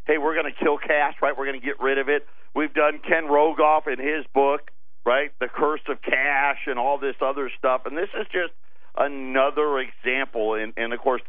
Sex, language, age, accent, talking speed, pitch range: male, English, 50-69, American, 220 wpm, 120-185 Hz